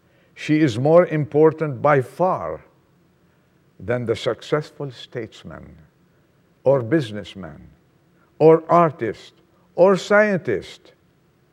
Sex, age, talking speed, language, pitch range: male, 50-69, 85 wpm, English, 125-160 Hz